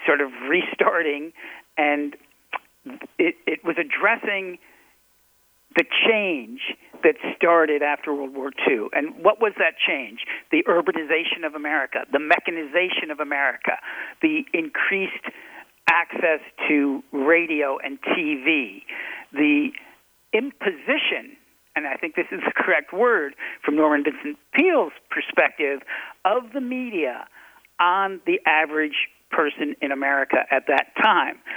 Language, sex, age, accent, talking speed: English, male, 60-79, American, 120 wpm